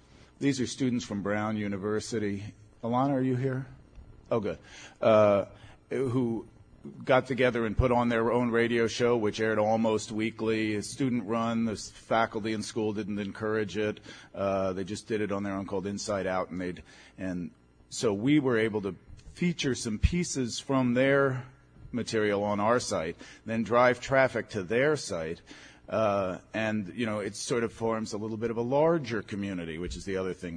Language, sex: English, male